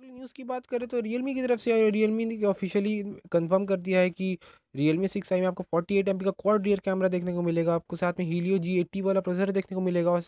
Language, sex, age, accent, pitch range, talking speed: Hindi, male, 20-39, native, 150-180 Hz, 245 wpm